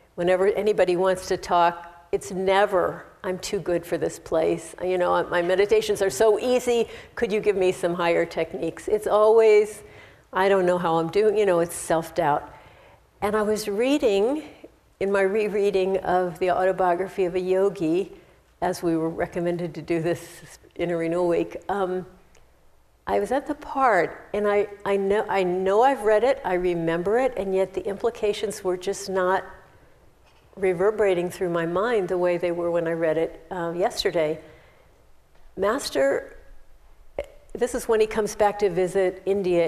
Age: 50-69